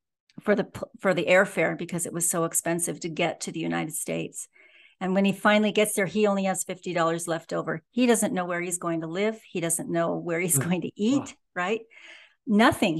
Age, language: 50-69, English